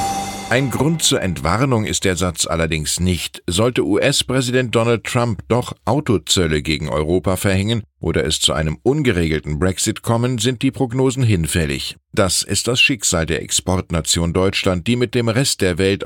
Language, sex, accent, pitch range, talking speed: German, male, German, 90-120 Hz, 155 wpm